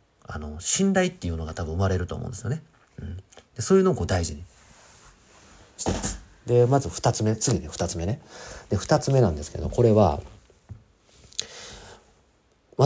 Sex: male